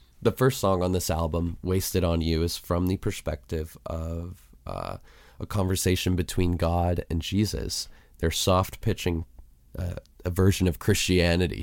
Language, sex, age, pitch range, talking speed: English, male, 20-39, 80-90 Hz, 140 wpm